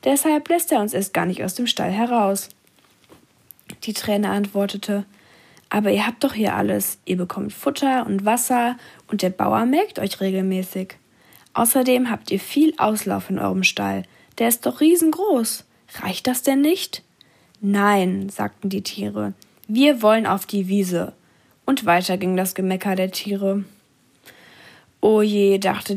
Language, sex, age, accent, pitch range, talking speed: German, female, 10-29, German, 190-240 Hz, 150 wpm